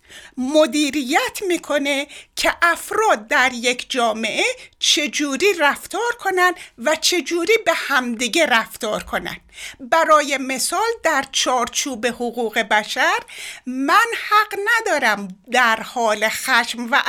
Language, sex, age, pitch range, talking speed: Persian, female, 60-79, 235-360 Hz, 100 wpm